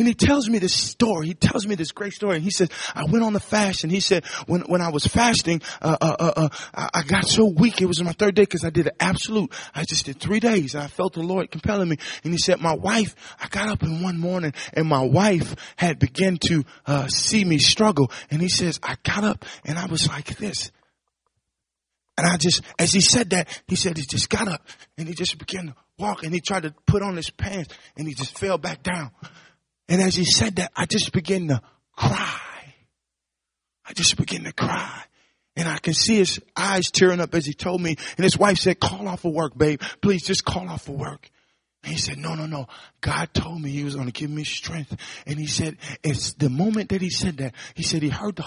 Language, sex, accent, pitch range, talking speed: English, male, American, 140-185 Hz, 245 wpm